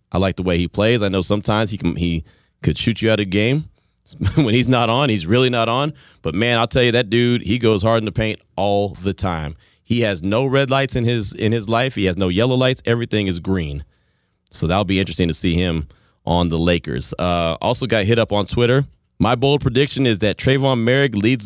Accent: American